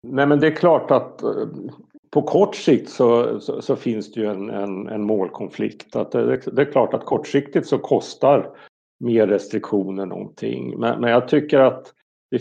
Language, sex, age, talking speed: Swedish, male, 60-79, 180 wpm